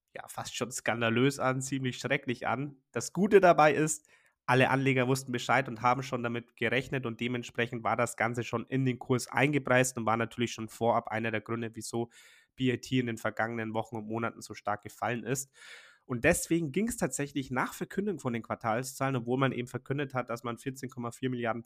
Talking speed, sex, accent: 195 wpm, male, German